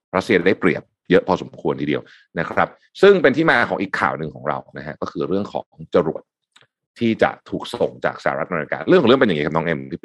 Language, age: Thai, 30-49